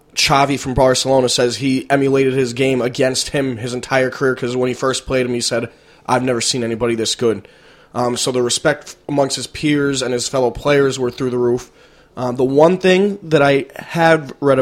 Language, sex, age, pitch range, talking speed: English, male, 20-39, 125-150 Hz, 205 wpm